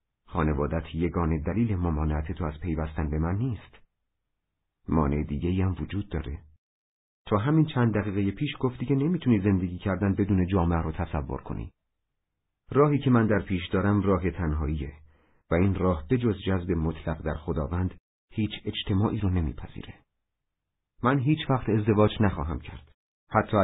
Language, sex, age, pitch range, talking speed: Persian, male, 50-69, 80-100 Hz, 150 wpm